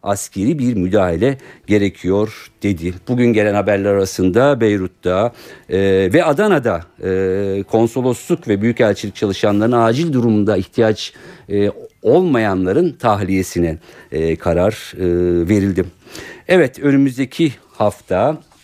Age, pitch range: 50-69, 90-115 Hz